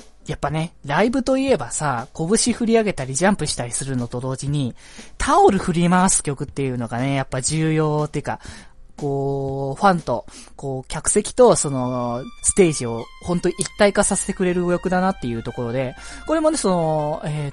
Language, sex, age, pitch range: Japanese, male, 20-39, 135-200 Hz